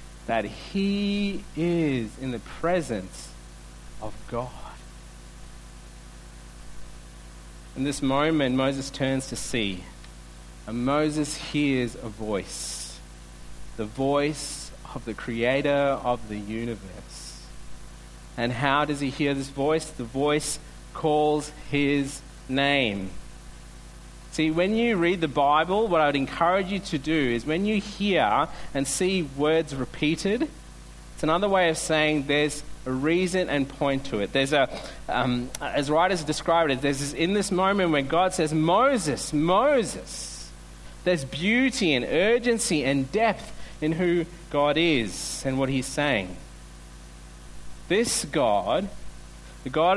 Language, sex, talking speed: English, male, 130 wpm